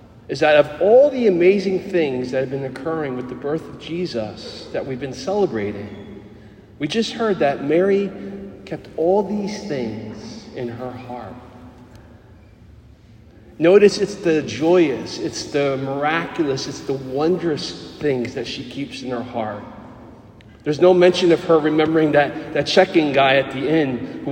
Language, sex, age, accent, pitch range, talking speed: English, male, 40-59, American, 125-175 Hz, 155 wpm